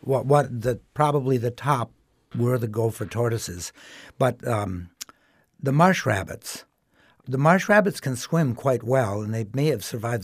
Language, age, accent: English, 60-79, American